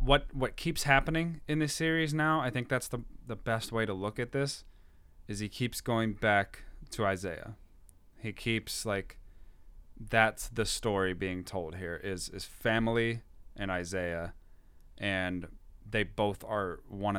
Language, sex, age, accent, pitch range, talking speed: English, male, 20-39, American, 90-115 Hz, 155 wpm